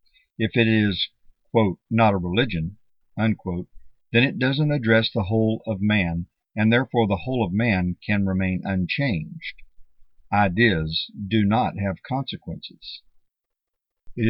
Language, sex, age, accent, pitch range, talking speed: English, male, 50-69, American, 95-120 Hz, 130 wpm